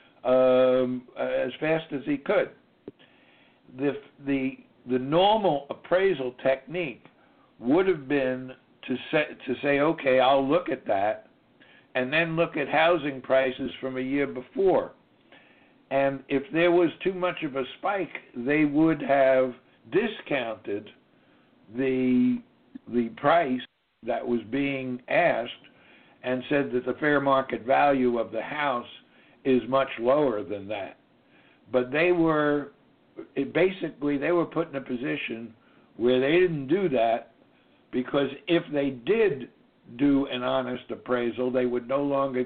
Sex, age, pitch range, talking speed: male, 60-79, 125-150 Hz, 135 wpm